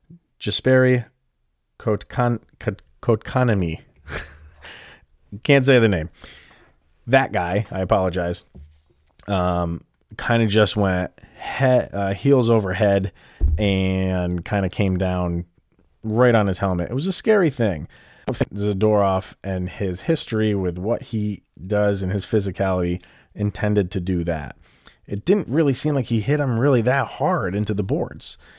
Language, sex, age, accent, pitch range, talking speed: English, male, 30-49, American, 95-120 Hz, 130 wpm